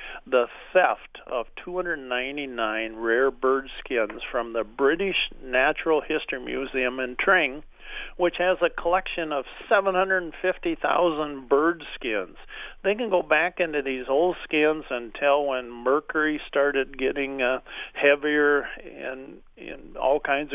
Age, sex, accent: 50-69, male, American